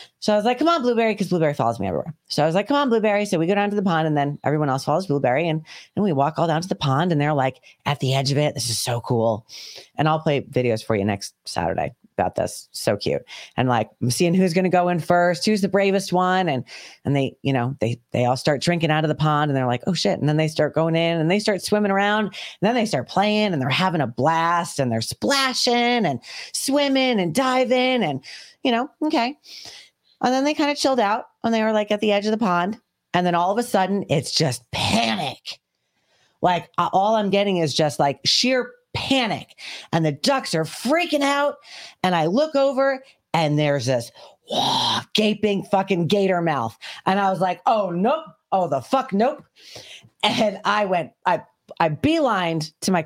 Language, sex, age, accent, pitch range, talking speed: English, female, 30-49, American, 150-220 Hz, 225 wpm